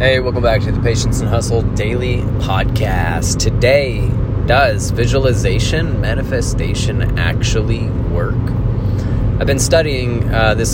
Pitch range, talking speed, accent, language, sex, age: 105-120 Hz, 115 wpm, American, English, male, 20-39